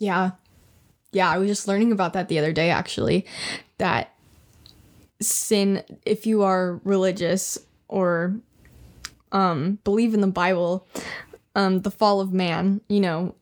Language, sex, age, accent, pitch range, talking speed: English, female, 10-29, American, 175-205 Hz, 140 wpm